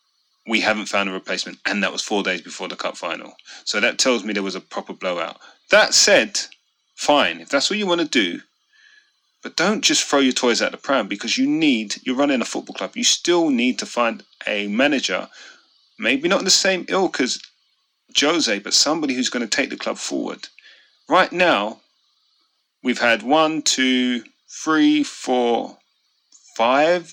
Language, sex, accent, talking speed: English, male, British, 185 wpm